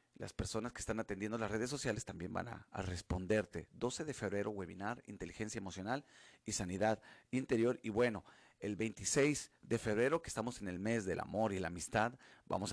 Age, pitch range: 40-59, 95-115 Hz